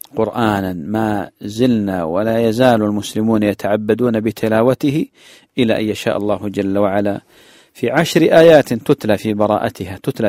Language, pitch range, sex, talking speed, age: English, 100-120 Hz, male, 120 wpm, 40-59